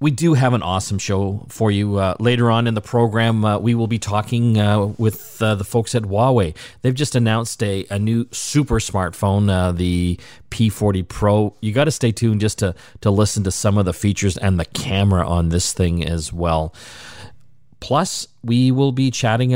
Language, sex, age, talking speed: English, male, 40-59, 200 wpm